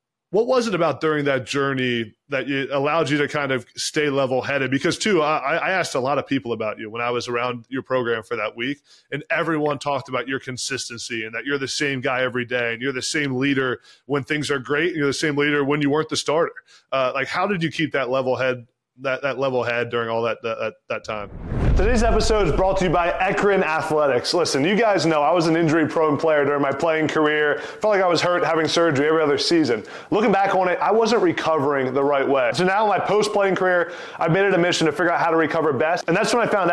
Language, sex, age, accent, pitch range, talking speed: English, male, 20-39, American, 140-190 Hz, 255 wpm